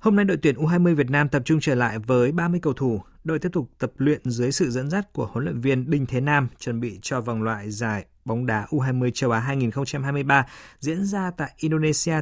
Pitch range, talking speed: 120-145 Hz, 230 wpm